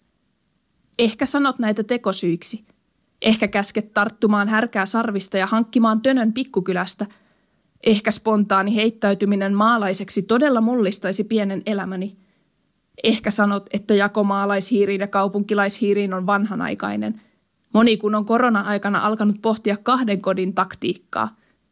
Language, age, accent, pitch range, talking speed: Finnish, 20-39, native, 200-225 Hz, 110 wpm